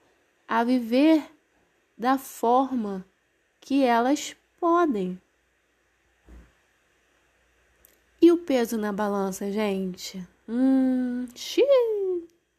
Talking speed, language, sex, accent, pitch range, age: 65 wpm, Portuguese, female, Brazilian, 200-265 Hz, 20-39